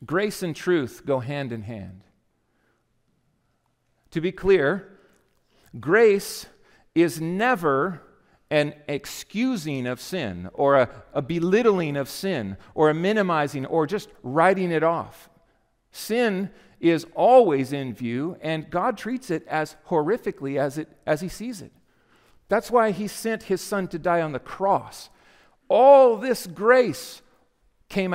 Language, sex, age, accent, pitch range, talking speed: English, male, 50-69, American, 145-210 Hz, 135 wpm